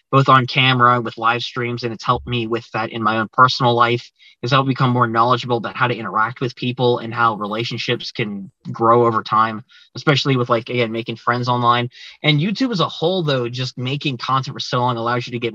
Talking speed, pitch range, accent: 225 wpm, 115-135 Hz, American